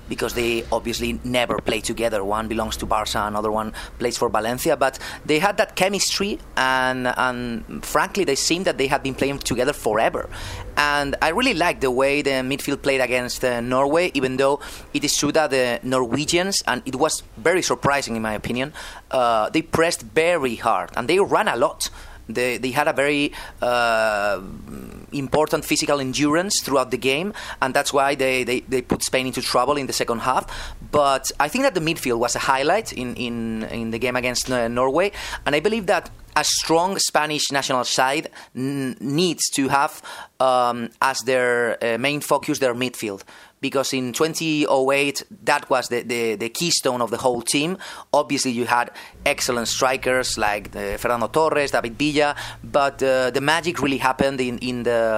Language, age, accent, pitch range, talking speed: English, 30-49, Spanish, 120-150 Hz, 180 wpm